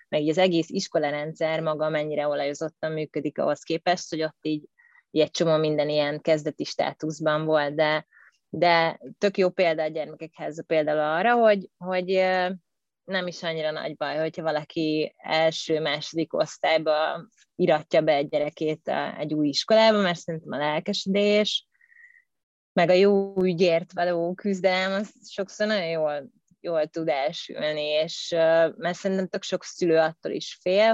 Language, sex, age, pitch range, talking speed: Hungarian, female, 20-39, 155-180 Hz, 140 wpm